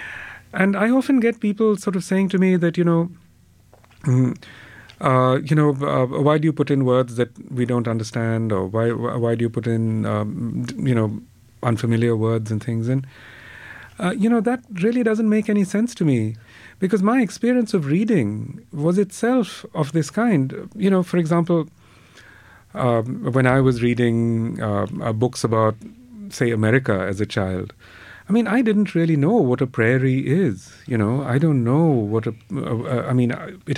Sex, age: male, 40-59